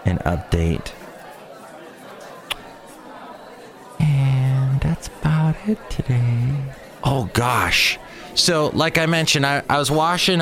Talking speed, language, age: 100 wpm, English, 30-49